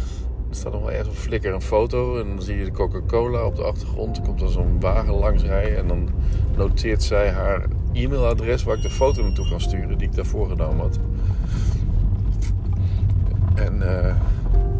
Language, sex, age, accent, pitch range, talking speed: French, male, 50-69, Dutch, 90-100 Hz, 185 wpm